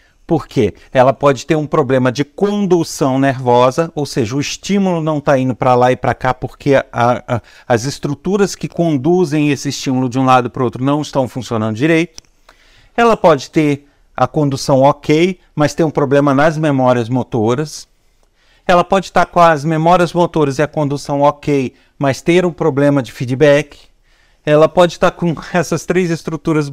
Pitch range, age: 135-165 Hz, 50-69